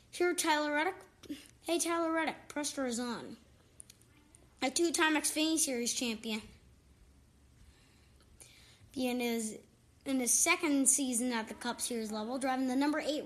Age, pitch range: 20-39, 225-280 Hz